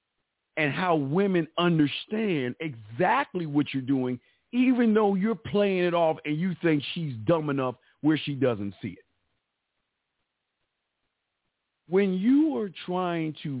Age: 50-69